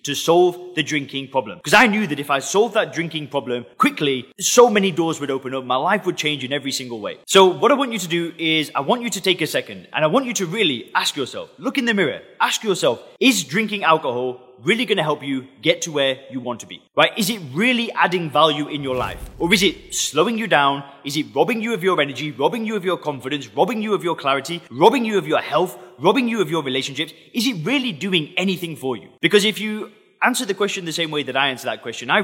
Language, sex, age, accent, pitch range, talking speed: English, male, 20-39, British, 135-195 Hz, 255 wpm